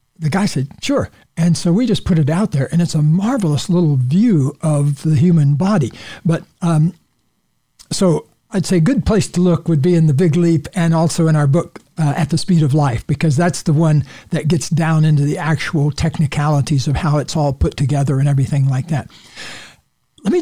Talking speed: 210 wpm